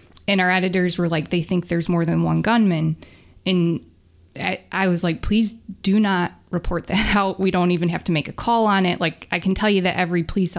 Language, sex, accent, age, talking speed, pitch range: English, female, American, 20-39, 230 wpm, 160-195 Hz